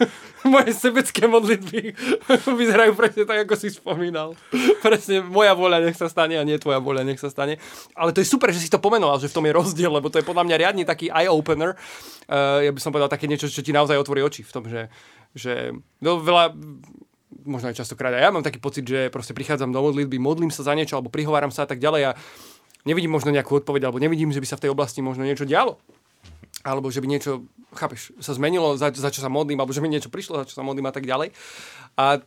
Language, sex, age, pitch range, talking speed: Slovak, male, 20-39, 140-185 Hz, 230 wpm